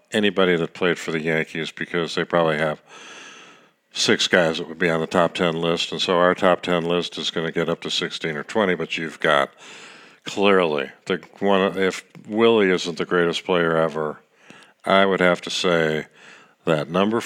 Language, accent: English, American